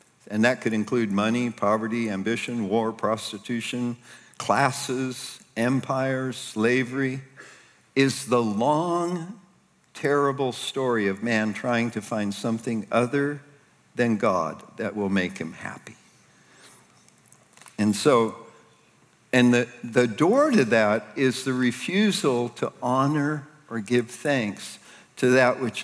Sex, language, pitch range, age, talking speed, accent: male, English, 110-125 Hz, 50-69, 115 wpm, American